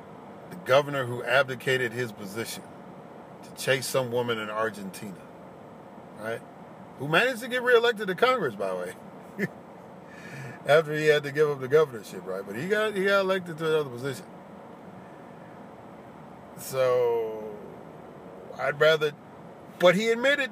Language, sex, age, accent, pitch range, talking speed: English, male, 50-69, American, 155-210 Hz, 135 wpm